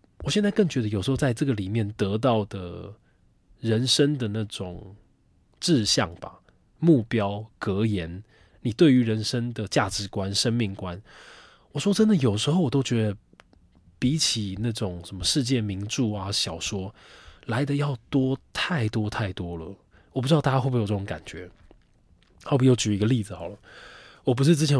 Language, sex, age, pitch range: Chinese, male, 20-39, 100-130 Hz